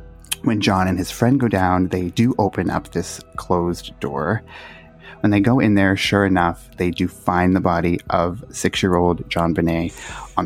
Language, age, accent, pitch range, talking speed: English, 30-49, American, 90-105 Hz, 180 wpm